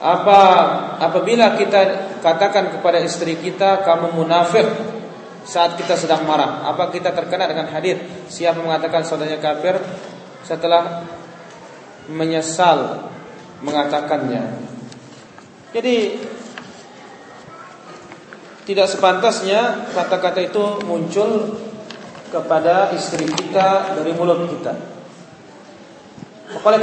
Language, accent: Indonesian, native